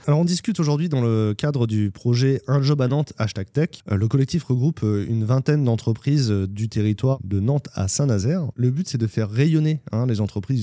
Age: 20-39